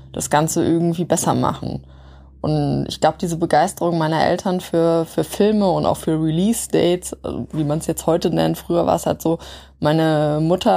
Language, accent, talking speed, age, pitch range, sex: German, German, 180 wpm, 20-39, 155-190 Hz, female